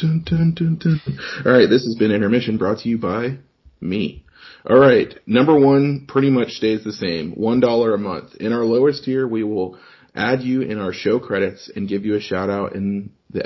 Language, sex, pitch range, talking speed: English, male, 100-120 Hz, 210 wpm